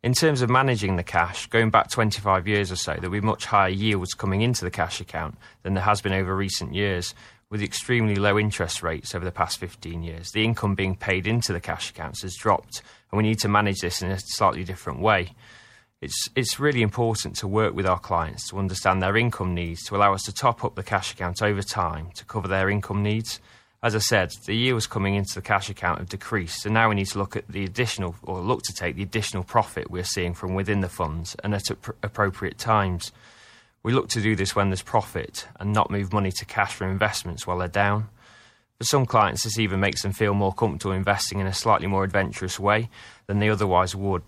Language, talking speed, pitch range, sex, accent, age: English, 230 wpm, 95-110 Hz, male, British, 20-39